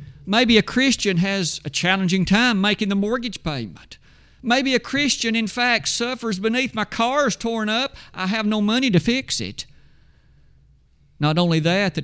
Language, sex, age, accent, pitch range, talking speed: English, male, 50-69, American, 145-205 Hz, 165 wpm